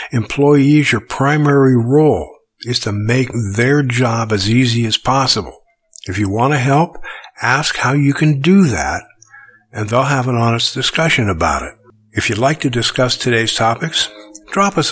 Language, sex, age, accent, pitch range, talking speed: English, male, 60-79, American, 105-140 Hz, 165 wpm